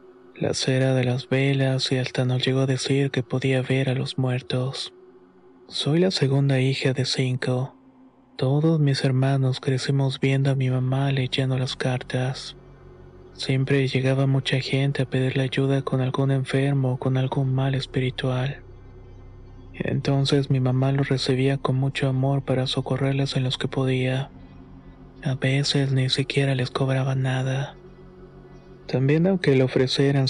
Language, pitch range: Spanish, 130-140 Hz